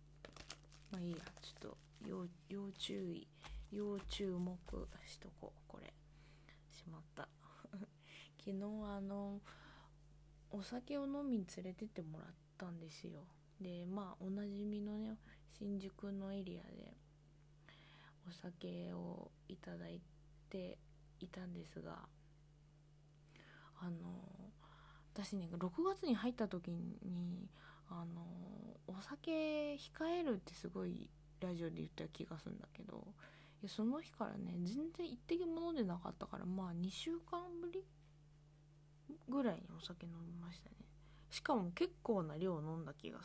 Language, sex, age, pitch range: Japanese, female, 20-39, 150-205 Hz